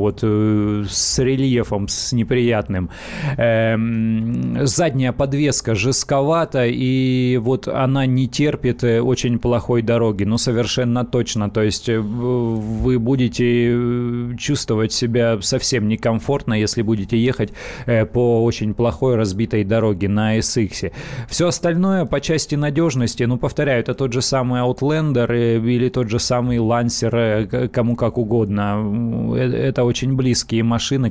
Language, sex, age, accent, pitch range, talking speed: Russian, male, 30-49, native, 115-130 Hz, 120 wpm